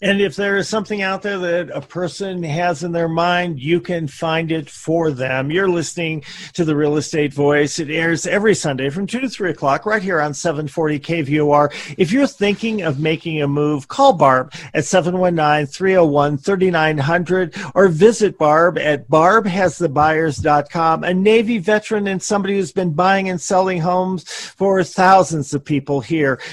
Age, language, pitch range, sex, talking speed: 40-59, English, 155-200 Hz, male, 165 wpm